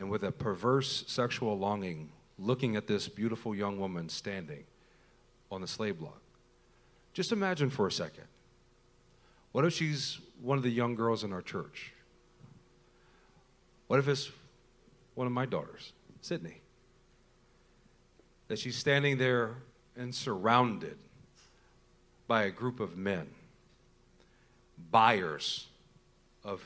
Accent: American